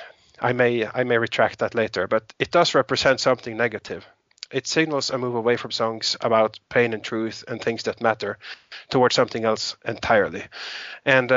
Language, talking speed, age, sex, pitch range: English, 175 wpm, 30-49, male, 110-135 Hz